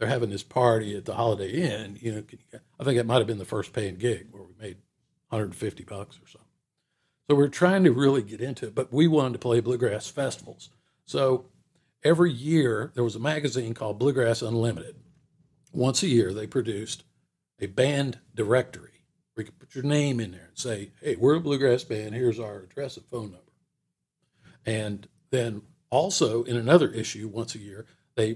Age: 50-69